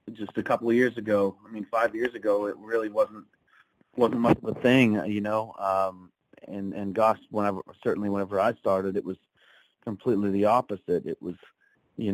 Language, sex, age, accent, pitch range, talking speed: English, male, 30-49, American, 100-125 Hz, 190 wpm